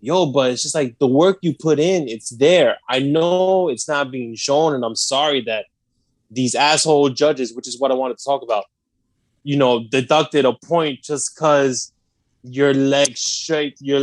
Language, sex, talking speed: English, male, 175 wpm